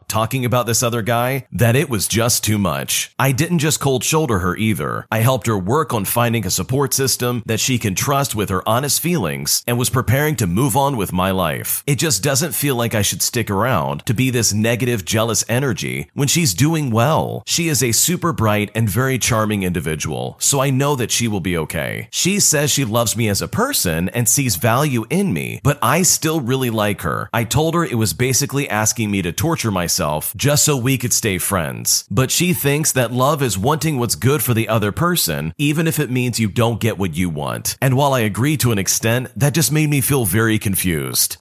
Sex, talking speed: male, 220 wpm